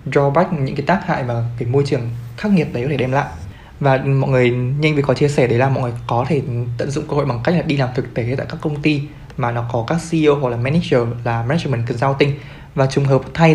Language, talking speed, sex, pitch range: Vietnamese, 260 wpm, male, 125-150 Hz